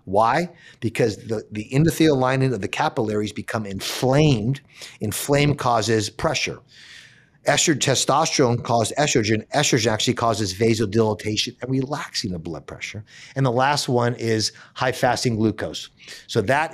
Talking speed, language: 135 wpm, English